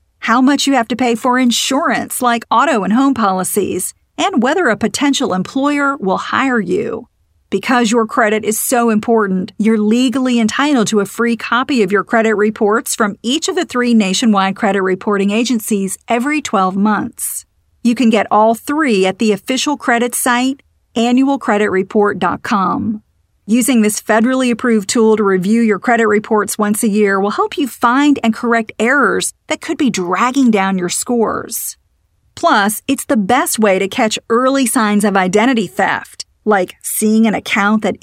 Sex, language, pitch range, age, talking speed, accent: female, English, 200-250 Hz, 40-59, 165 wpm, American